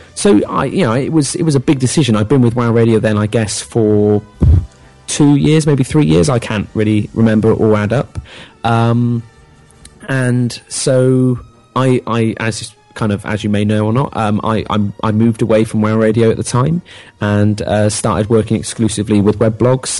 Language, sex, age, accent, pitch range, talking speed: English, male, 30-49, British, 95-115 Hz, 200 wpm